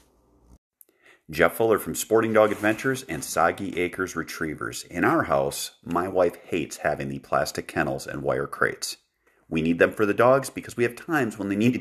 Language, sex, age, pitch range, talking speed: English, male, 40-59, 85-115 Hz, 190 wpm